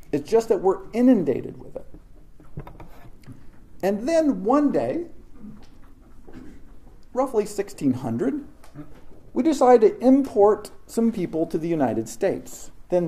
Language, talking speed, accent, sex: English, 110 wpm, American, male